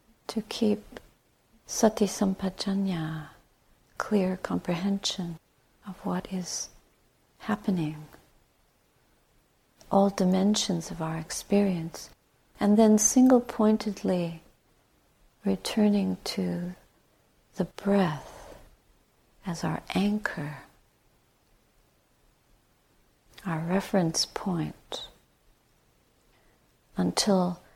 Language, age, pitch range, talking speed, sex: English, 50-69, 180-210 Hz, 60 wpm, female